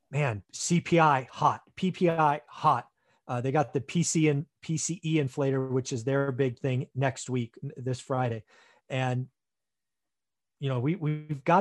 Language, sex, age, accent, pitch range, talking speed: English, male, 30-49, American, 135-170 Hz, 145 wpm